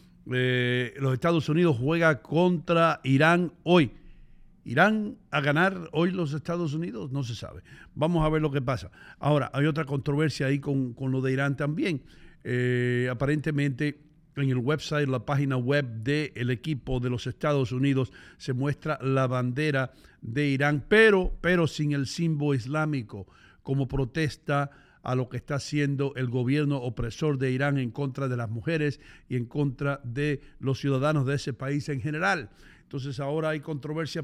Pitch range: 130-155 Hz